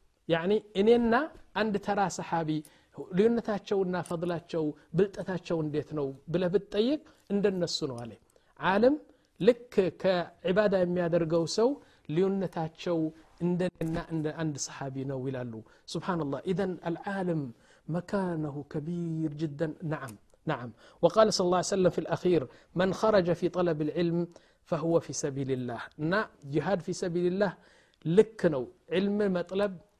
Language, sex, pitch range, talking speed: Amharic, male, 150-190 Hz, 120 wpm